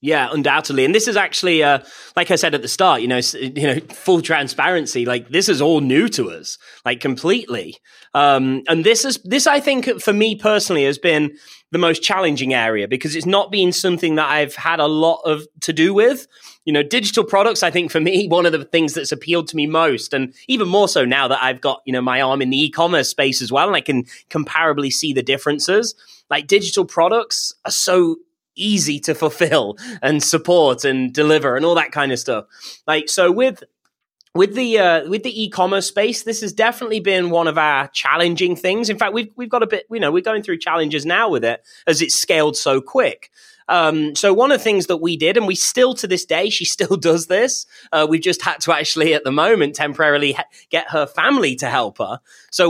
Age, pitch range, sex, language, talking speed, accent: 20-39, 150-205 Hz, male, English, 220 wpm, British